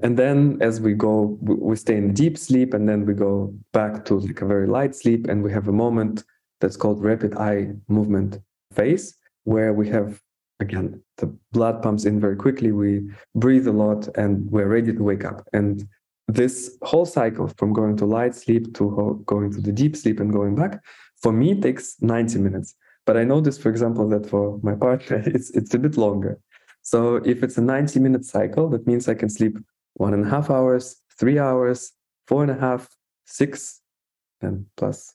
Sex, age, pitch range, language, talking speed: male, 20-39, 105-125 Hz, English, 200 wpm